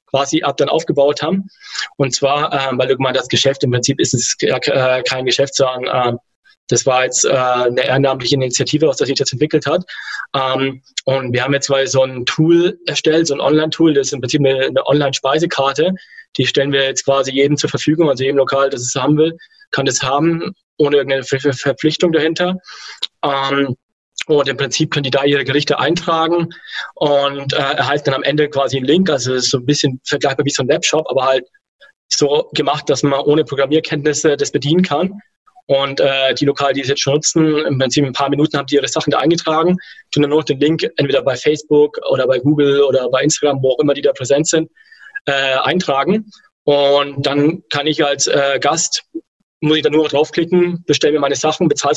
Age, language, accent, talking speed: 20-39, German, German, 205 wpm